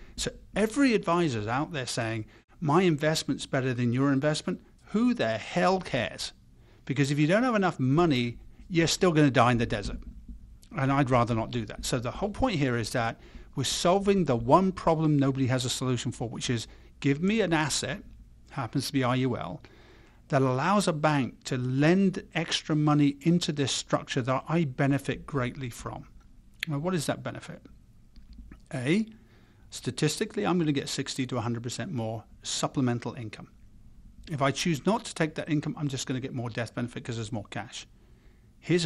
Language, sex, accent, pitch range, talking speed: English, male, British, 120-155 Hz, 185 wpm